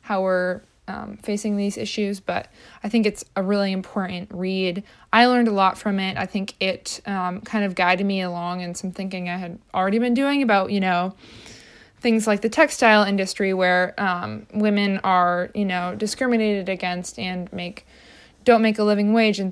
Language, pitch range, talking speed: English, 185-215 Hz, 190 wpm